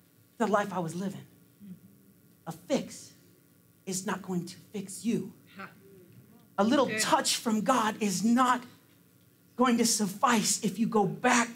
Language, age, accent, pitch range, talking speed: English, 40-59, American, 200-280 Hz, 140 wpm